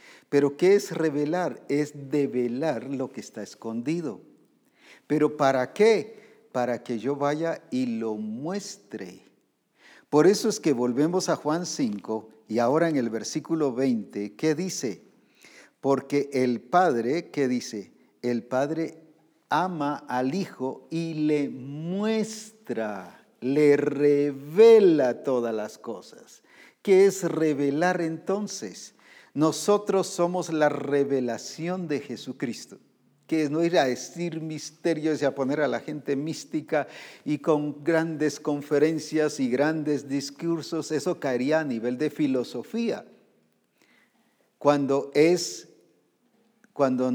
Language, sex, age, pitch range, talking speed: English, male, 50-69, 130-165 Hz, 120 wpm